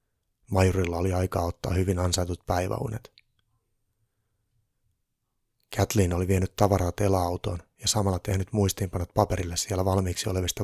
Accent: native